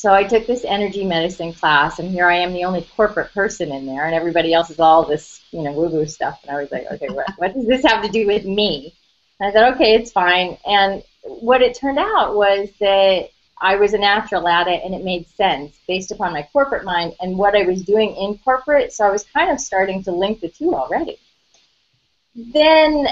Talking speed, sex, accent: 230 wpm, female, American